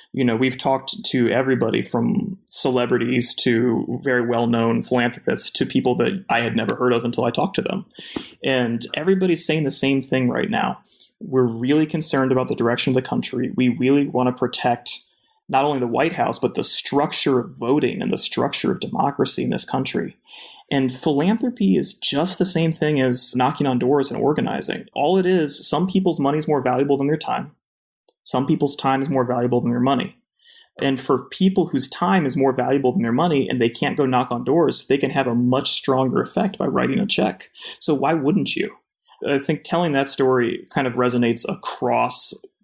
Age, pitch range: 20-39, 125-155 Hz